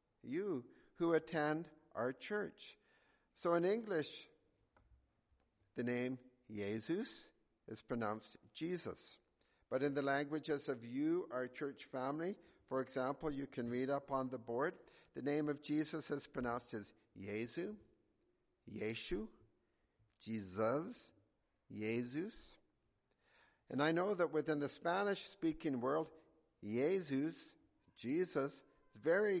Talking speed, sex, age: 110 wpm, male, 50-69